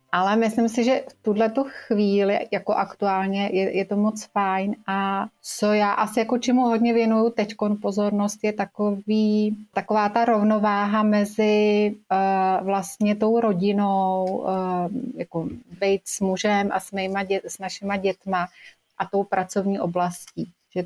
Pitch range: 185-210 Hz